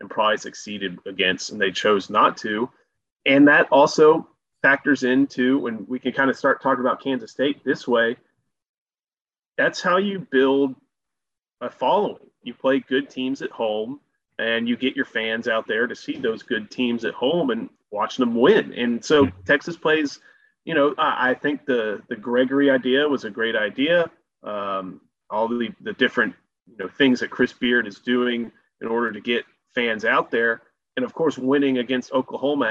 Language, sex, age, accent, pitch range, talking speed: English, male, 30-49, American, 120-145 Hz, 180 wpm